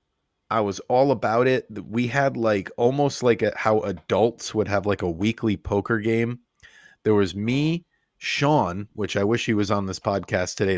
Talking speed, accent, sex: 180 wpm, American, male